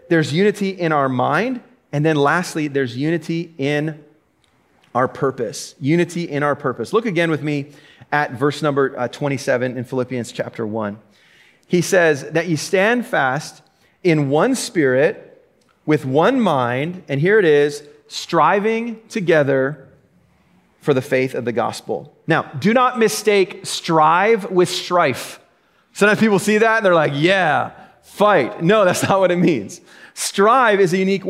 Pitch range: 150-215 Hz